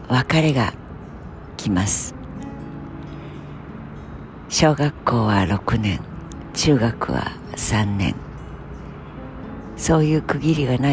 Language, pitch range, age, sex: Japanese, 105-145 Hz, 60-79, female